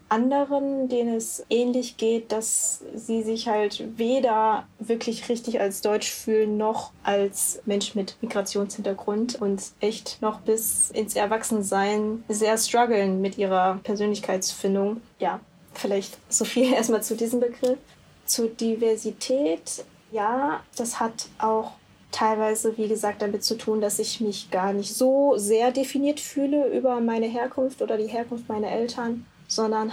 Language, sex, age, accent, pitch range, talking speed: German, female, 10-29, German, 210-230 Hz, 140 wpm